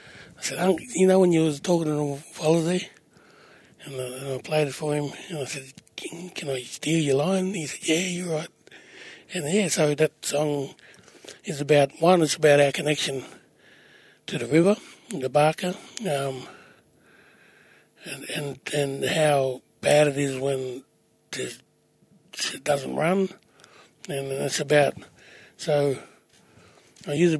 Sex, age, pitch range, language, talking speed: male, 60-79, 140-170 Hz, English, 145 wpm